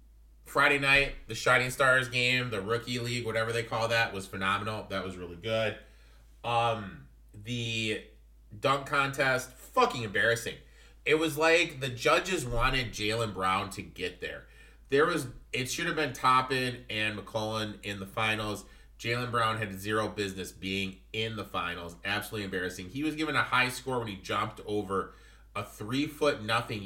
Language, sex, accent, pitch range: English, male, American, 100-125 Hz